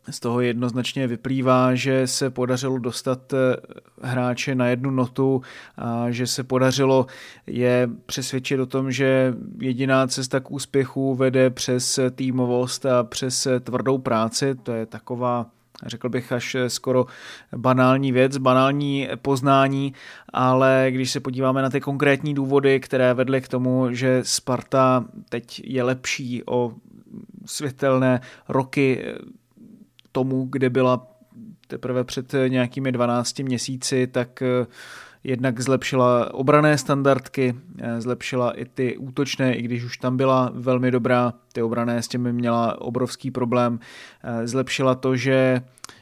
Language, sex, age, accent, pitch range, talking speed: Czech, male, 30-49, native, 125-135 Hz, 125 wpm